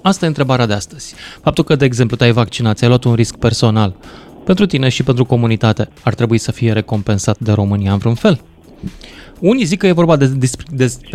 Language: Romanian